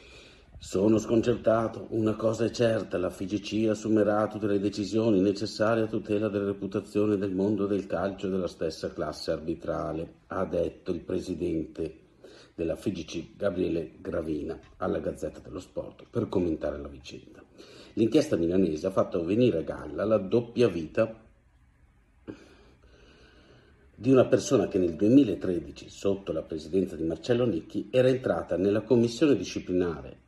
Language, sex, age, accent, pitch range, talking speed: Italian, male, 50-69, native, 95-115 Hz, 135 wpm